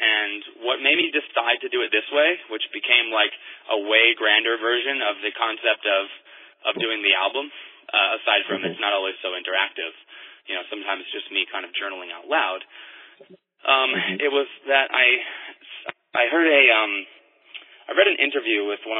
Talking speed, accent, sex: 185 wpm, American, male